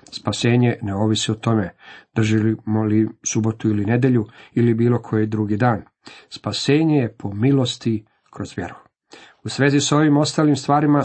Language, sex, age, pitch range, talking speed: Croatian, male, 50-69, 110-140 Hz, 145 wpm